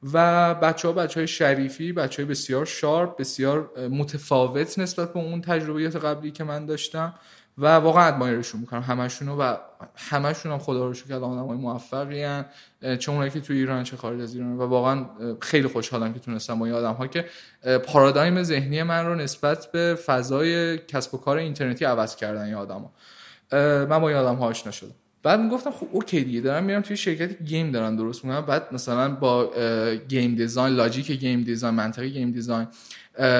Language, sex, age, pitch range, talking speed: Persian, male, 20-39, 120-150 Hz, 175 wpm